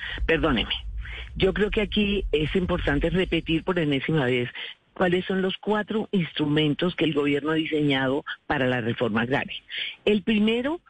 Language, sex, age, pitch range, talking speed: Spanish, female, 50-69, 165-210 Hz, 150 wpm